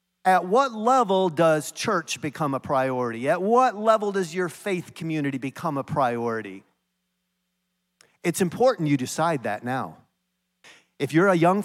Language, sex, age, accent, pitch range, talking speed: English, male, 50-69, American, 135-190 Hz, 145 wpm